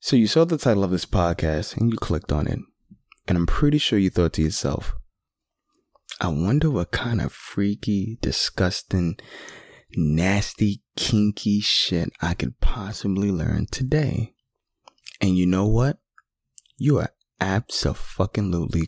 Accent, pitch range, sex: American, 85-115 Hz, male